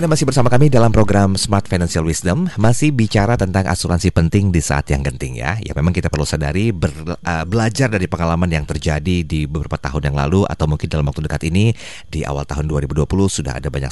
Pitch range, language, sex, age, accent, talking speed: 75-110 Hz, English, male, 30-49, Indonesian, 205 wpm